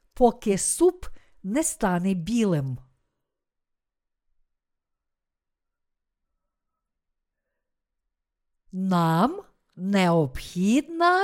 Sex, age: female, 50-69